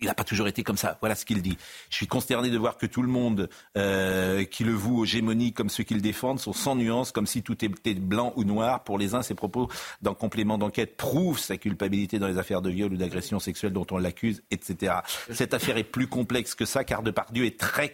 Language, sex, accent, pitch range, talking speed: French, male, French, 115-170 Hz, 255 wpm